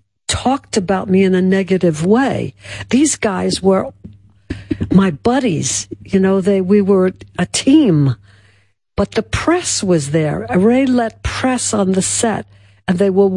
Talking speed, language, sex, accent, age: 155 wpm, English, female, American, 60-79